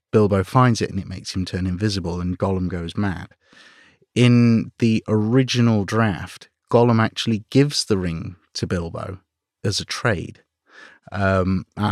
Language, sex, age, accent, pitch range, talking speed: English, male, 30-49, British, 95-120 Hz, 140 wpm